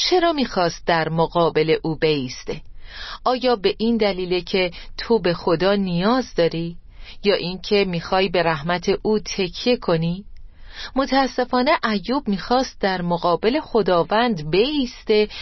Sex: female